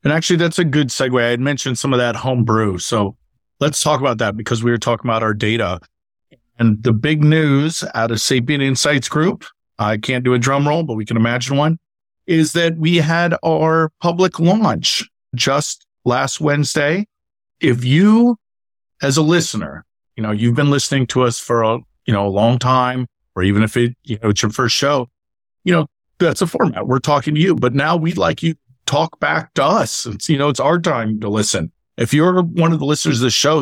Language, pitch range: English, 115-155 Hz